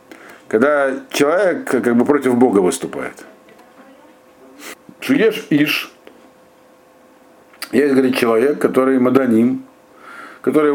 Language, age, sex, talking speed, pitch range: Russian, 60-79, male, 80 wpm, 120-150 Hz